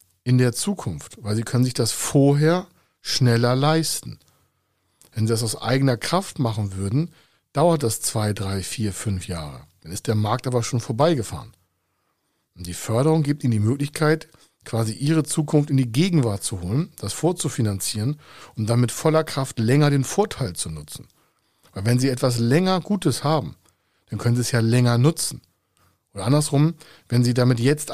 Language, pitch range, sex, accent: German, 110-145 Hz, male, German